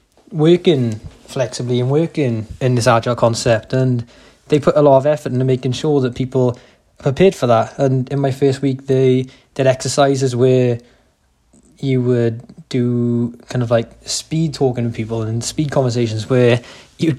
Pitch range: 120-140 Hz